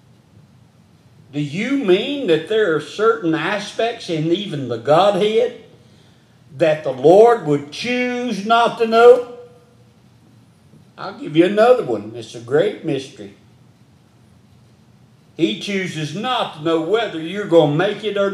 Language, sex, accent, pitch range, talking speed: English, male, American, 135-210 Hz, 135 wpm